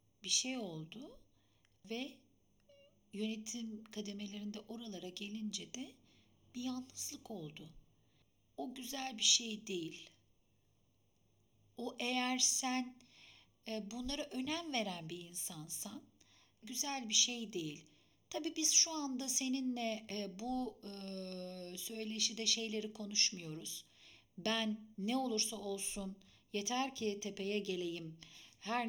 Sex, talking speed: female, 105 wpm